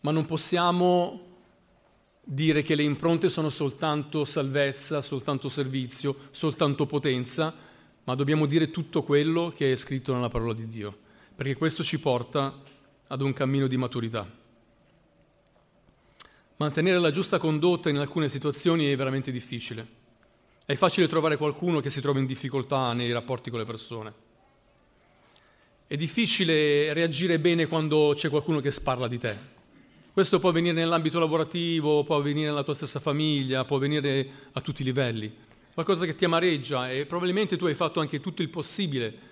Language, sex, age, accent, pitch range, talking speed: Italian, male, 40-59, native, 135-165 Hz, 155 wpm